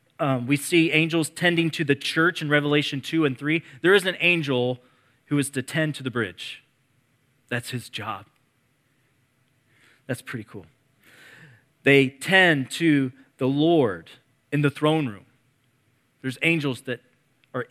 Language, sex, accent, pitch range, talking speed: English, male, American, 130-155 Hz, 145 wpm